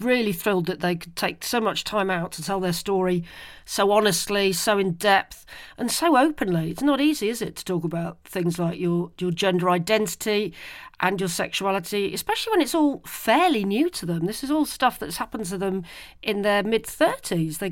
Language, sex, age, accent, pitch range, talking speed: English, female, 40-59, British, 175-250 Hz, 200 wpm